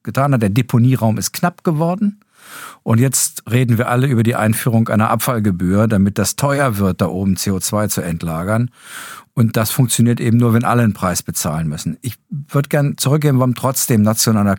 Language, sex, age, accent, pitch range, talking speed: German, male, 50-69, German, 100-130 Hz, 180 wpm